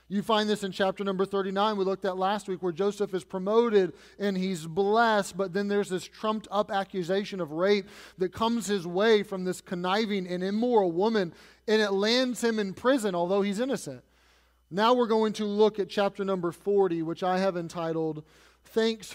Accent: American